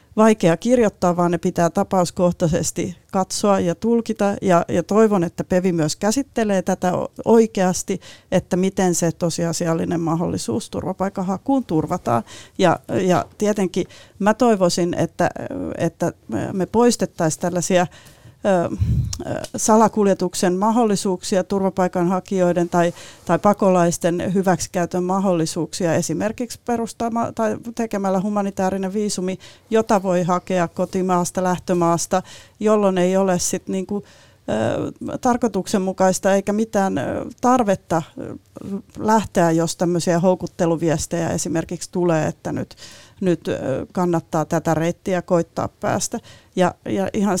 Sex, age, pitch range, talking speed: female, 40-59, 175-200 Hz, 105 wpm